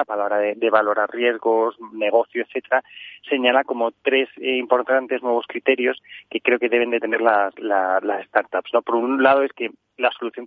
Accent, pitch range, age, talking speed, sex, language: Spanish, 115-130 Hz, 30-49, 195 wpm, male, Spanish